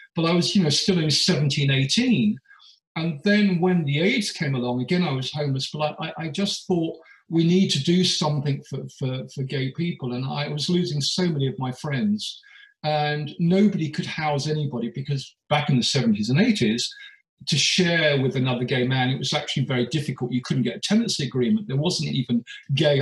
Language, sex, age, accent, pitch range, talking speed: English, male, 40-59, British, 140-185 Hz, 205 wpm